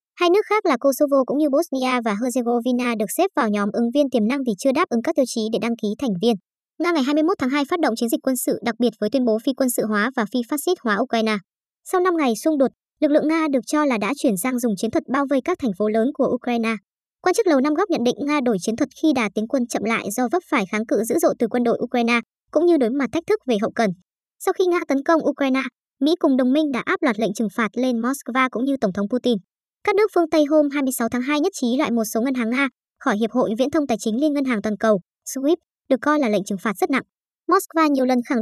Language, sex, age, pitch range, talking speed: Vietnamese, male, 20-39, 230-300 Hz, 285 wpm